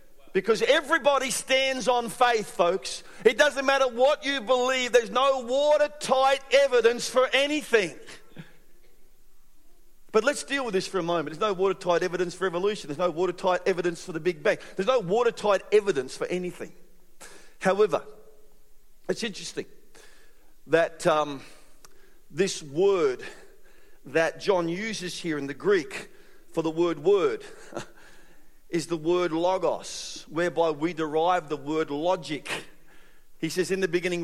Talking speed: 140 wpm